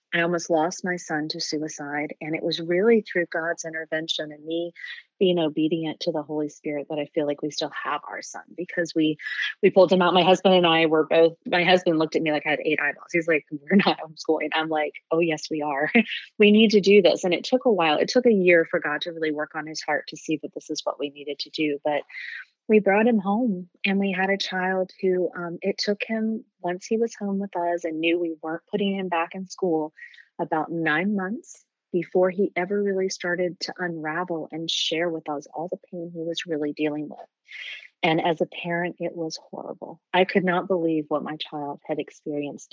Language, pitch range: English, 155-185 Hz